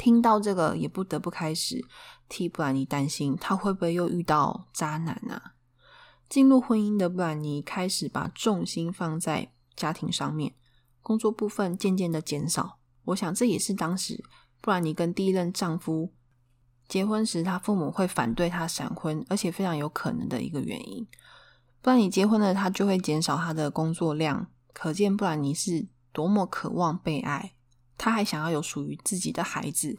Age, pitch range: 20-39, 150-195 Hz